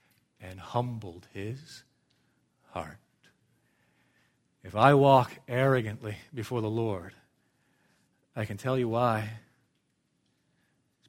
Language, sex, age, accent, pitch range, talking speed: English, male, 40-59, American, 105-130 Hz, 90 wpm